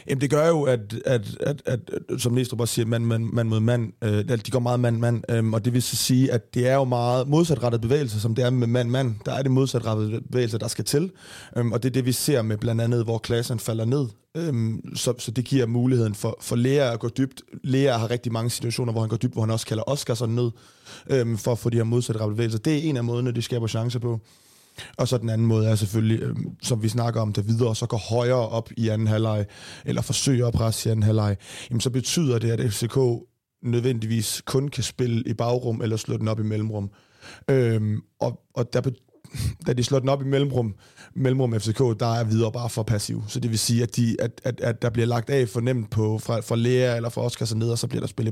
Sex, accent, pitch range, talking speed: male, native, 115-125 Hz, 245 wpm